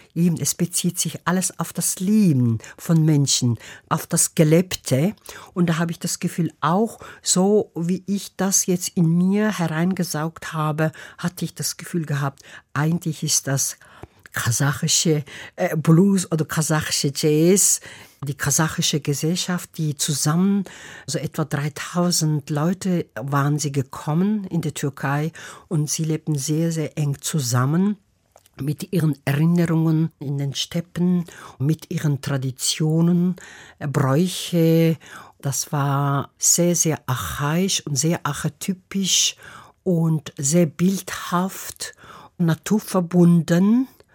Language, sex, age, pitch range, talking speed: German, female, 60-79, 145-175 Hz, 115 wpm